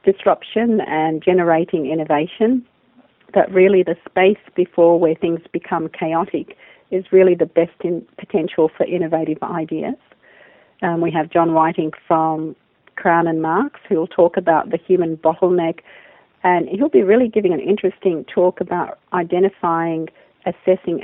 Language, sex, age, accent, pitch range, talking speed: English, female, 40-59, Australian, 160-185 Hz, 140 wpm